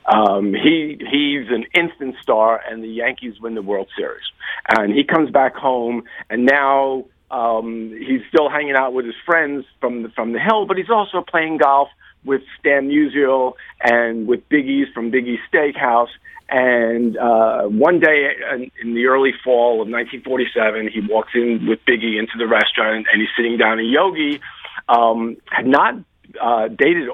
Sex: male